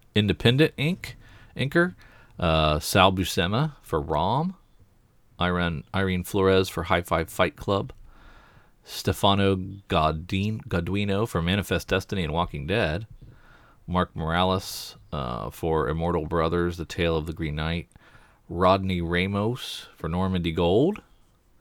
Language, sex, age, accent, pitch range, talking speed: English, male, 40-59, American, 85-105 Hz, 115 wpm